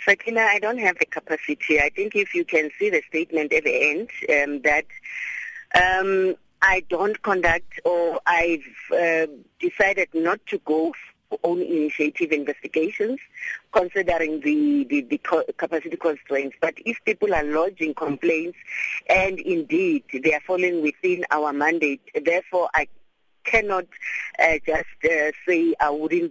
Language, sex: English, female